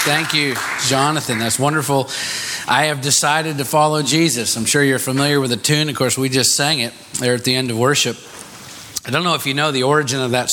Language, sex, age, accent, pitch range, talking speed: English, male, 40-59, American, 120-140 Hz, 230 wpm